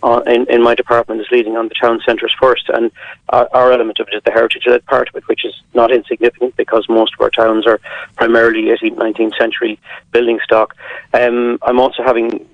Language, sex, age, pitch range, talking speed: English, male, 40-59, 115-135 Hz, 210 wpm